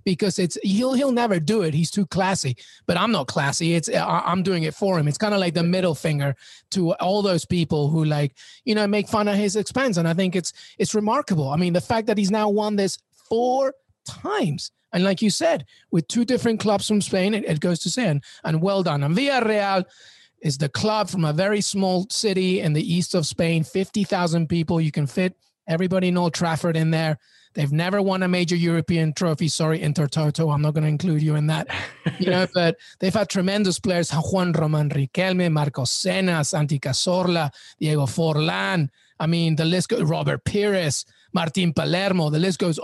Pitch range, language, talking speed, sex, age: 160-195 Hz, English, 205 wpm, male, 30-49